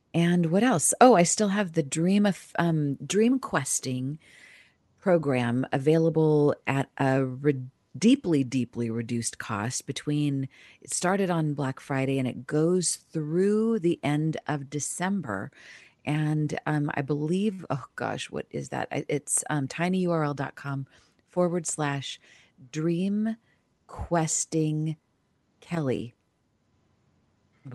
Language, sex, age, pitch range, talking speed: English, female, 40-59, 130-175 Hz, 115 wpm